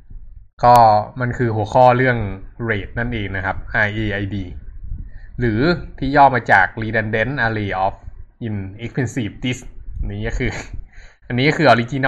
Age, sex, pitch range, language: 20-39, male, 95-125 Hz, Thai